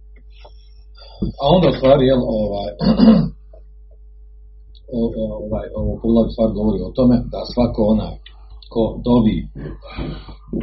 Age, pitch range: 50-69, 90-120 Hz